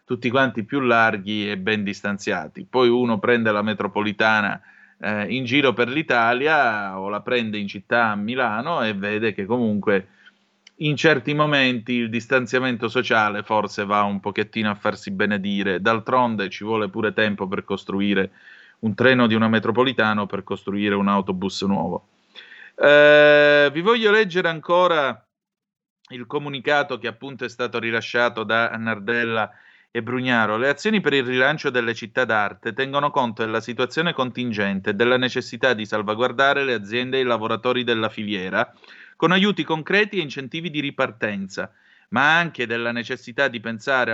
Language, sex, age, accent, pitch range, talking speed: Italian, male, 30-49, native, 110-145 Hz, 150 wpm